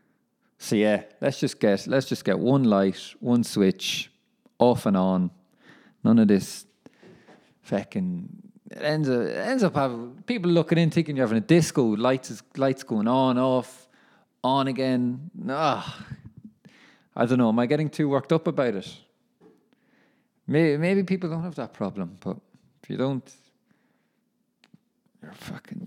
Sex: male